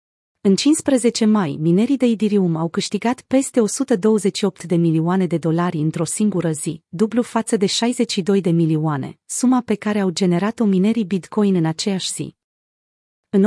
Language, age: Romanian, 30-49